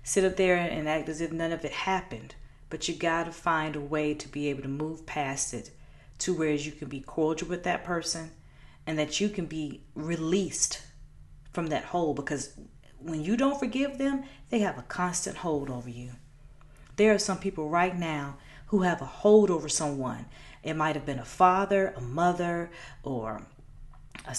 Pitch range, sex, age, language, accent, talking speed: 135-215 Hz, female, 40-59, English, American, 190 wpm